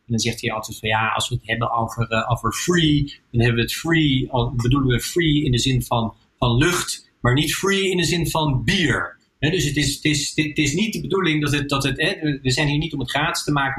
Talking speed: 260 wpm